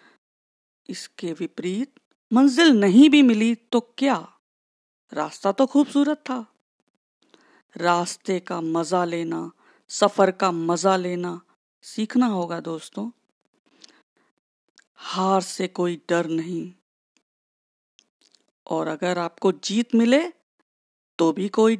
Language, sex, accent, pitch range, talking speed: Hindi, female, native, 175-230 Hz, 100 wpm